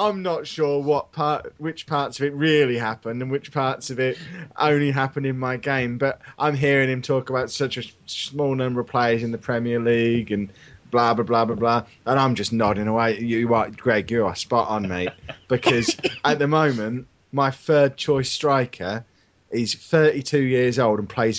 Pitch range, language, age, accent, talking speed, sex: 100-130 Hz, English, 20-39, British, 195 wpm, male